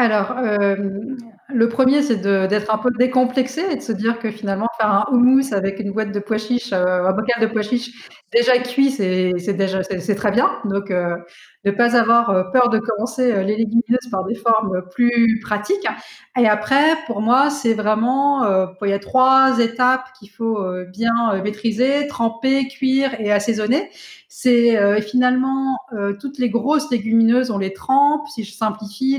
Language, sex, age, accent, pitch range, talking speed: French, female, 30-49, French, 205-250 Hz, 180 wpm